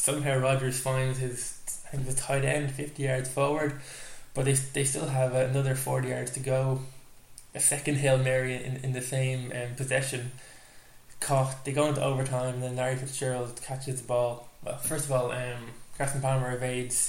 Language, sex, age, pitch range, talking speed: English, male, 20-39, 125-140 Hz, 185 wpm